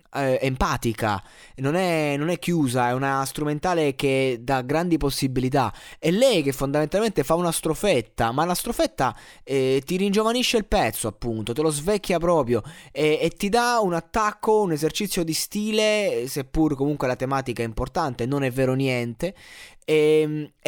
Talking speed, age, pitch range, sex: 155 wpm, 20-39, 120-175 Hz, male